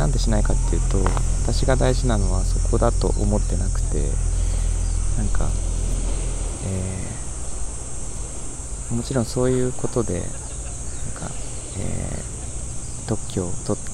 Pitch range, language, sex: 90-115 Hz, Japanese, male